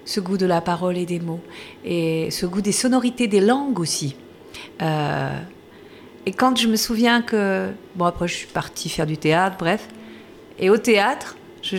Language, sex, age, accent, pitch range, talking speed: French, female, 40-59, French, 175-220 Hz, 185 wpm